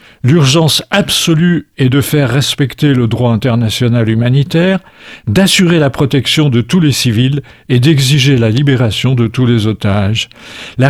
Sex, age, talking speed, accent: male, 50-69, 145 wpm, French